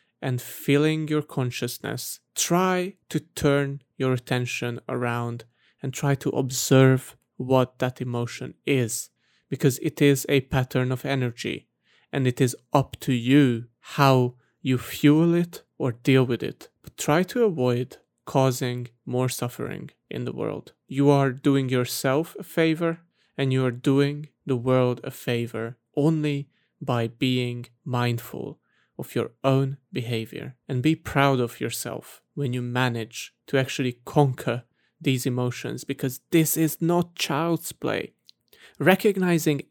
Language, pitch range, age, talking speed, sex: English, 125-155 Hz, 30-49, 140 wpm, male